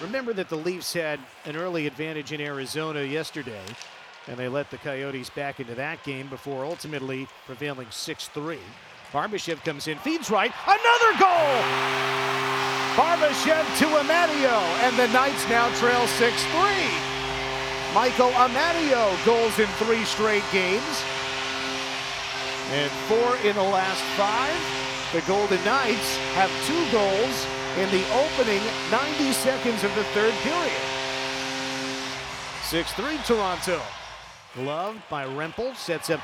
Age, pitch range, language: 50-69, 155-240 Hz, English